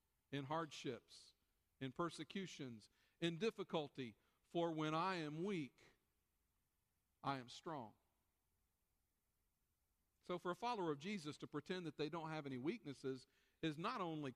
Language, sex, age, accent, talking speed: English, male, 50-69, American, 130 wpm